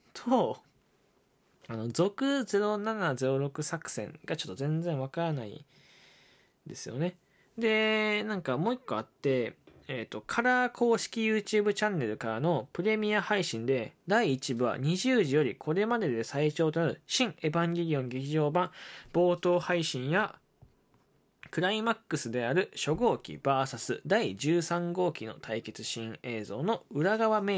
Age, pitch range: 20-39, 130-210 Hz